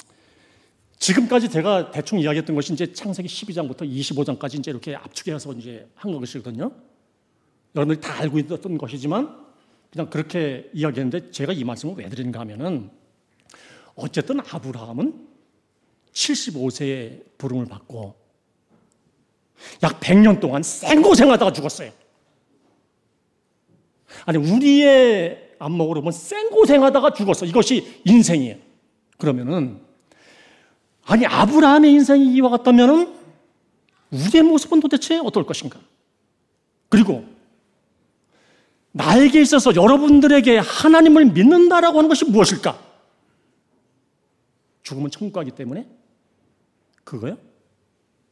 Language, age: Korean, 40-59